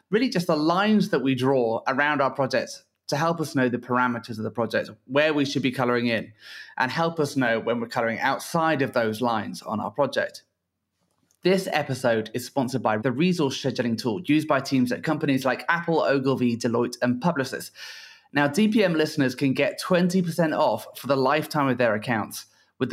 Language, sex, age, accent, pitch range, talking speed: English, male, 30-49, British, 120-150 Hz, 190 wpm